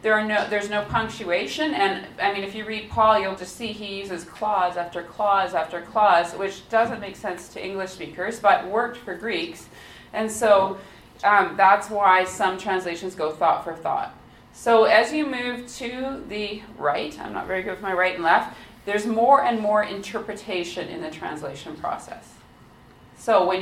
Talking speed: 185 wpm